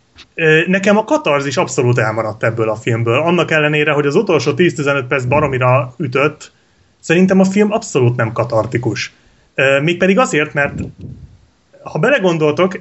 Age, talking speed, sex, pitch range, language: 30-49, 135 wpm, male, 130-175 Hz, Hungarian